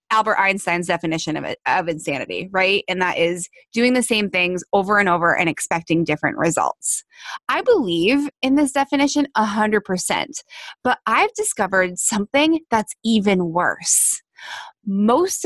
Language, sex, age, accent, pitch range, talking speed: English, female, 20-39, American, 185-295 Hz, 140 wpm